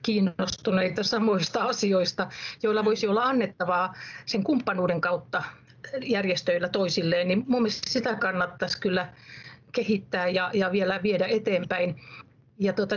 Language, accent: Finnish, native